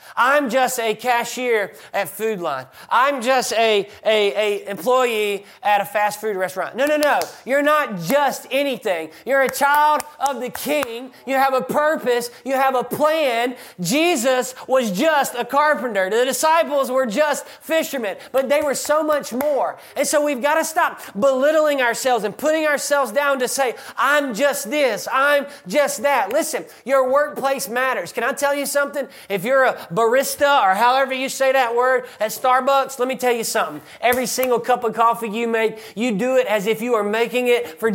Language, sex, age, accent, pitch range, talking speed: English, male, 20-39, American, 230-275 Hz, 185 wpm